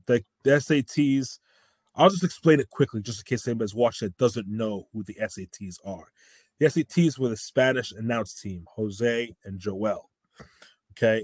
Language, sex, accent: English, male, American